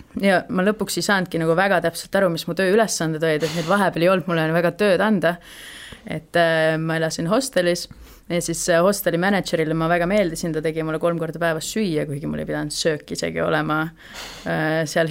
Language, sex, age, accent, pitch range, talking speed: English, female, 30-49, Finnish, 160-175 Hz, 190 wpm